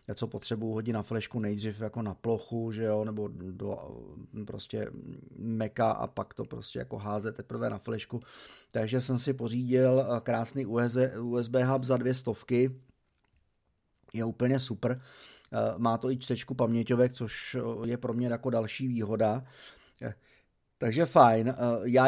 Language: Czech